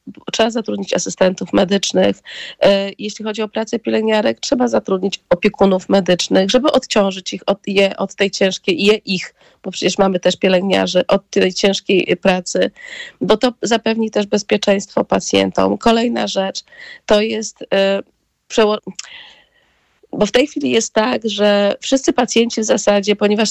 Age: 30-49